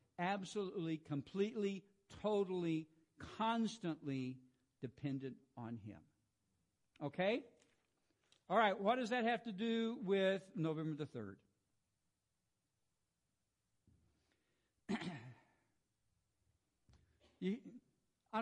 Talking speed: 70 wpm